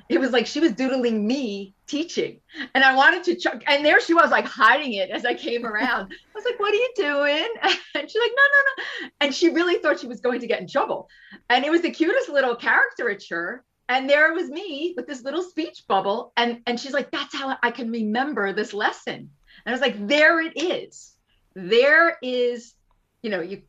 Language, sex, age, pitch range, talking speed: English, female, 30-49, 205-290 Hz, 220 wpm